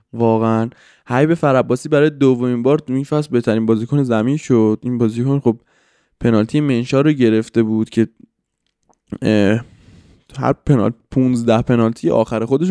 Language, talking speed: Persian, 125 wpm